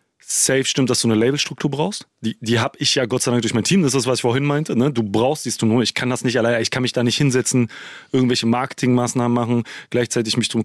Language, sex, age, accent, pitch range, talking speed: German, male, 30-49, German, 115-140 Hz, 270 wpm